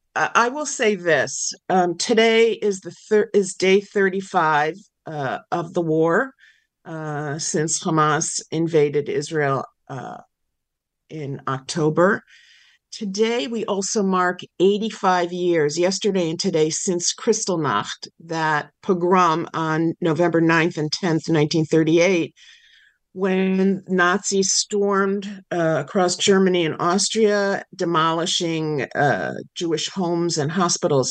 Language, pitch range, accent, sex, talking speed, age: English, 165-210 Hz, American, female, 110 wpm, 50-69